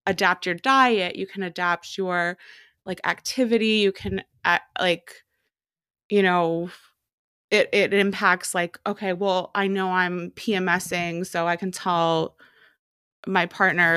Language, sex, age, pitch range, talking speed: English, female, 20-39, 175-210 Hz, 135 wpm